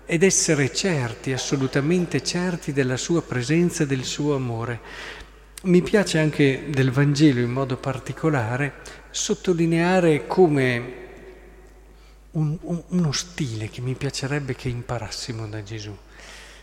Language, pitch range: Italian, 125-155 Hz